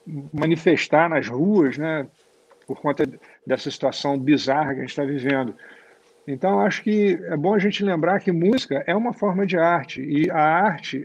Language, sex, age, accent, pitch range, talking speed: Portuguese, male, 50-69, Brazilian, 140-185 Hz, 175 wpm